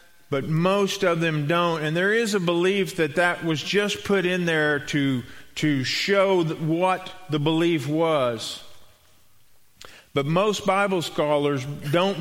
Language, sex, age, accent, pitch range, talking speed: English, male, 40-59, American, 130-180 Hz, 145 wpm